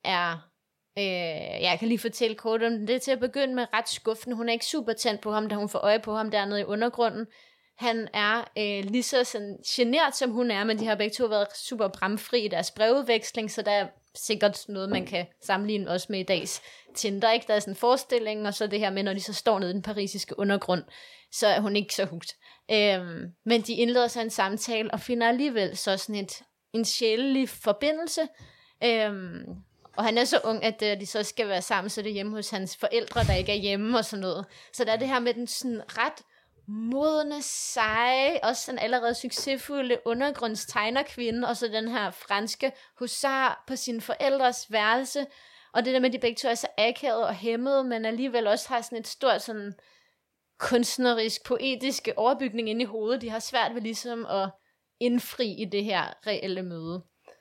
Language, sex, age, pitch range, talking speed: English, female, 20-39, 205-245 Hz, 205 wpm